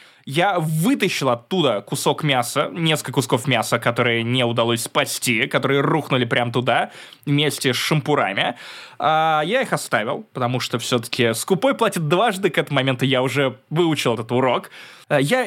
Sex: male